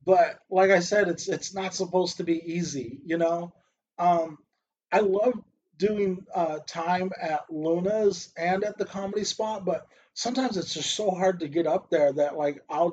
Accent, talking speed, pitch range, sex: American, 180 wpm, 160-190 Hz, male